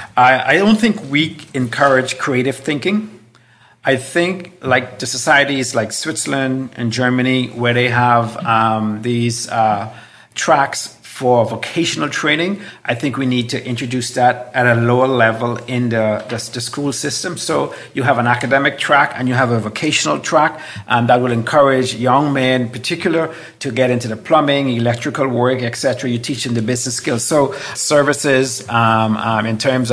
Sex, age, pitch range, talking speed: male, 50-69, 120-145 Hz, 170 wpm